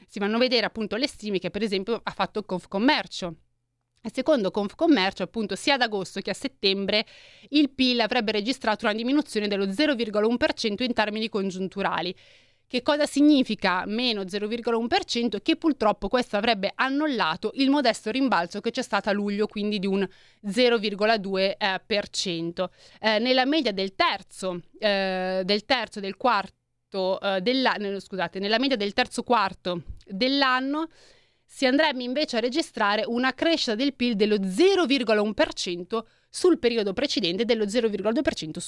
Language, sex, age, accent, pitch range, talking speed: Italian, female, 30-49, native, 195-250 Hz, 135 wpm